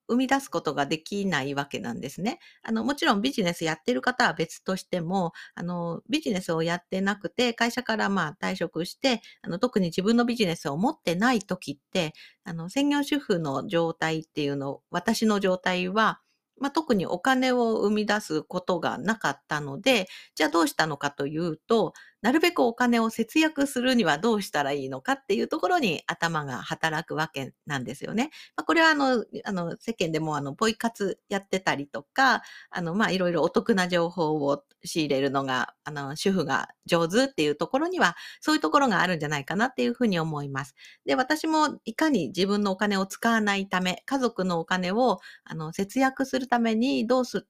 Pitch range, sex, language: 165-245 Hz, female, Japanese